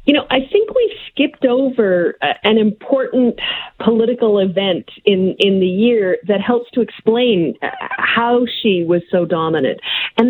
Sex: female